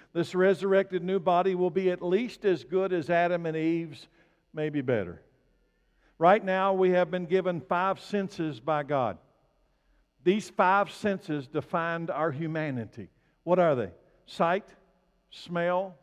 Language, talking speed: English, 140 wpm